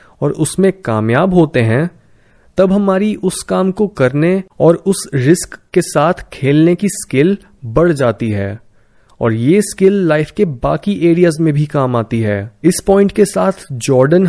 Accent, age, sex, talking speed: native, 20-39, male, 165 wpm